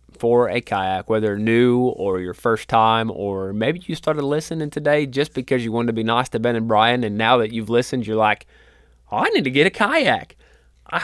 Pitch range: 115-135 Hz